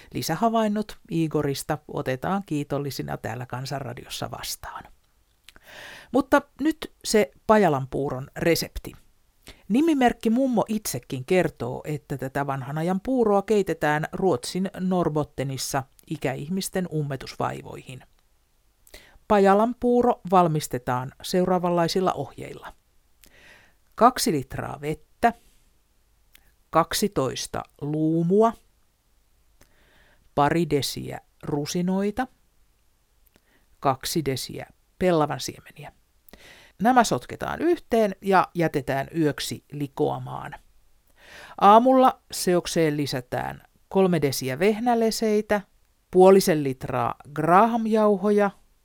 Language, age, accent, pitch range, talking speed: Finnish, 60-79, native, 140-210 Hz, 70 wpm